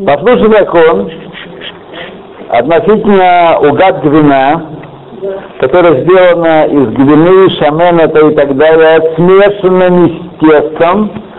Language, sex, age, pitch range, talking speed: Russian, male, 60-79, 150-200 Hz, 90 wpm